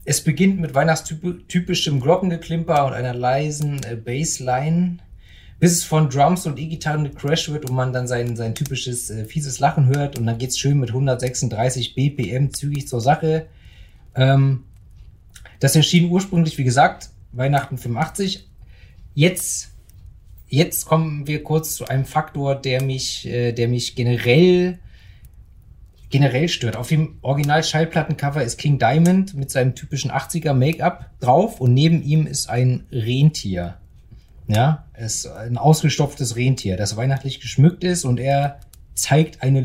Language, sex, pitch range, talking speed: German, male, 120-155 Hz, 140 wpm